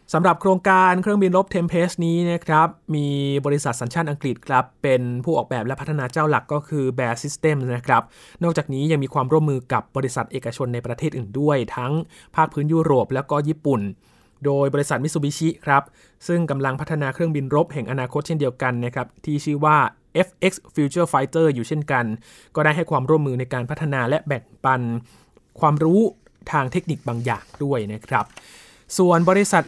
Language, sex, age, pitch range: Thai, male, 20-39, 130-160 Hz